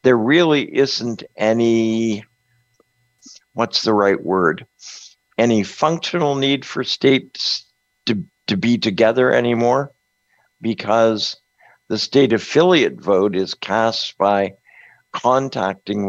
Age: 60-79